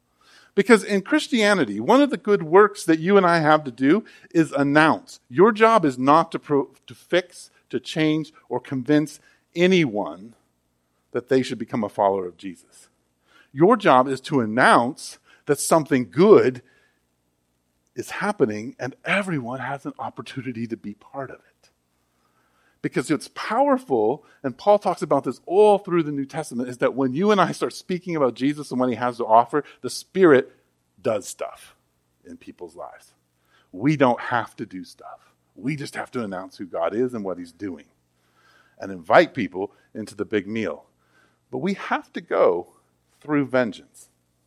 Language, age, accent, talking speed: English, 50-69, American, 170 wpm